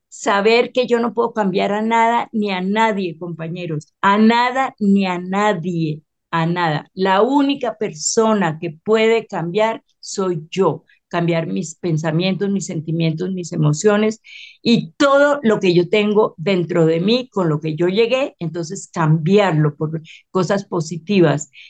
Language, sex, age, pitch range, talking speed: Spanish, female, 50-69, 170-225 Hz, 145 wpm